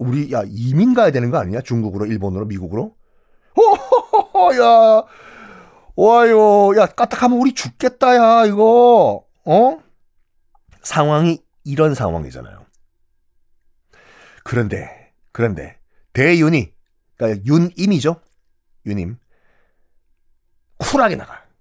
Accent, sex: native, male